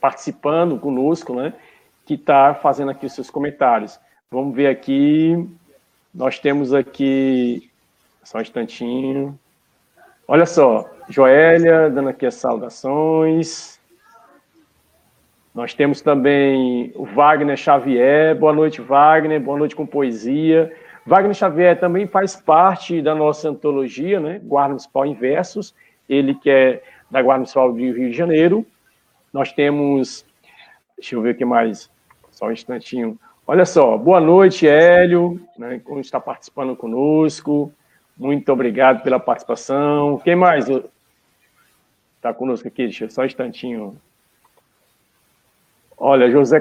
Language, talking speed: Portuguese, 130 wpm